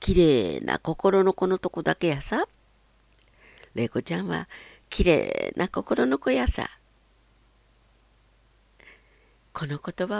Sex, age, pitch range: female, 50-69, 115-165 Hz